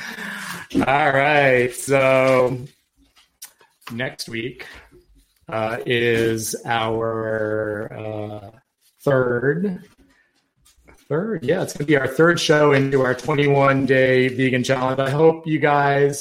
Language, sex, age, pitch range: English, male, 30-49, 110-130 Hz